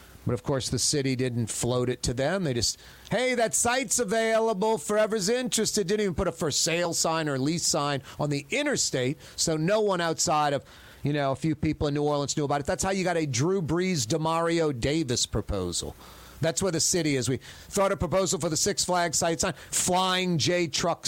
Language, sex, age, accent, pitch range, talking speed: English, male, 40-59, American, 135-185 Hz, 215 wpm